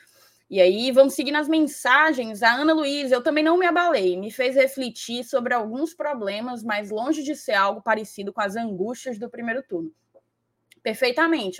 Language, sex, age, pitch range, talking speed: Portuguese, female, 20-39, 200-275 Hz, 170 wpm